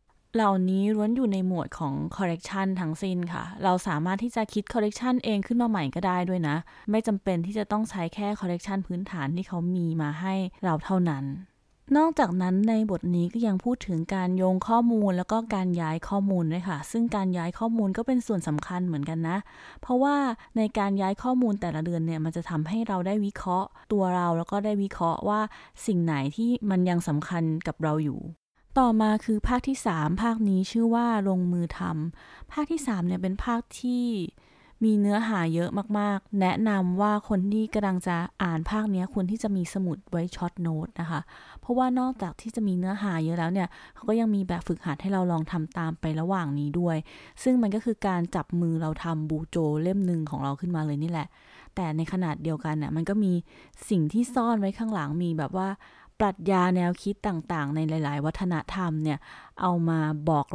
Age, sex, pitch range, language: 20-39, female, 165-210 Hz, Thai